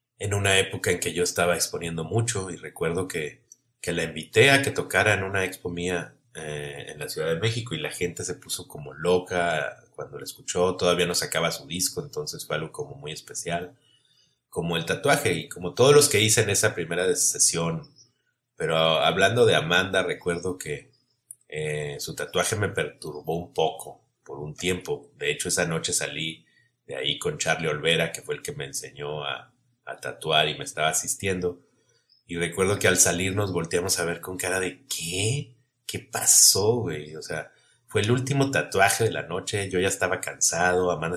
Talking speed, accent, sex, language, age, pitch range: 190 wpm, Mexican, male, Spanish, 30-49, 85-115 Hz